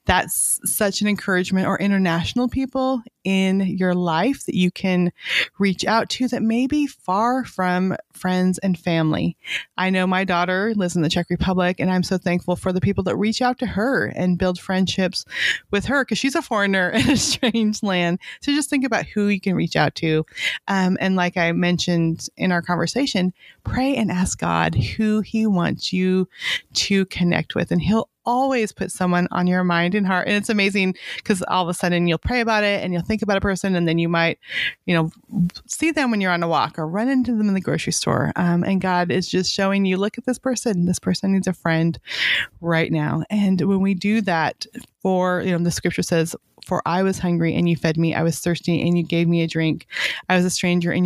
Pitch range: 170-205 Hz